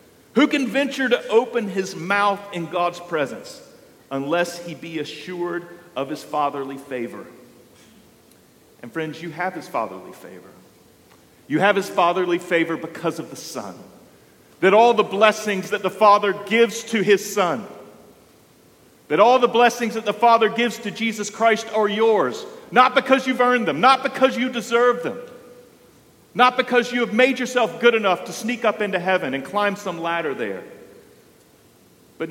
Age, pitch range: 50-69, 165-230 Hz